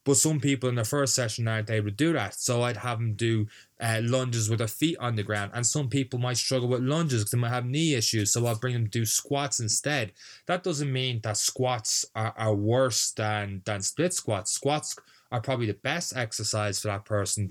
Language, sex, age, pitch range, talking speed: English, male, 20-39, 110-130 Hz, 235 wpm